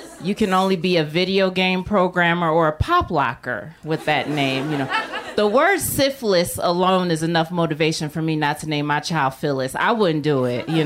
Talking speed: 205 wpm